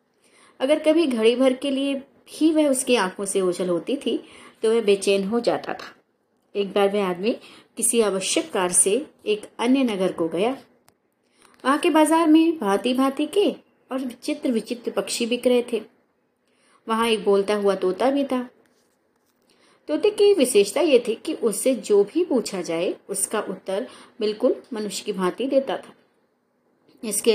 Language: Hindi